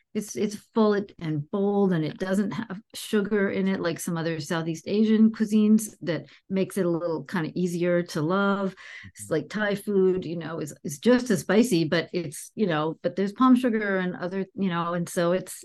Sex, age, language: female, 50-69, English